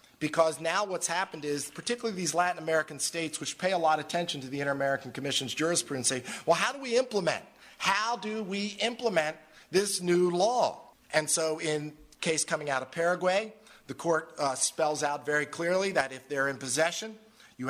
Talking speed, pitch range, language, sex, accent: 185 wpm, 145-175 Hz, English, male, American